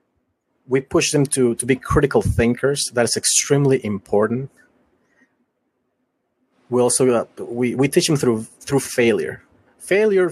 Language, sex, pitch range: English, male, 115-135 Hz